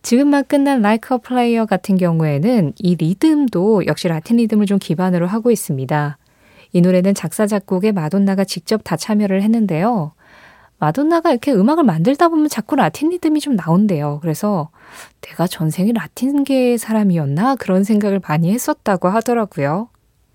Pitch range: 170-235 Hz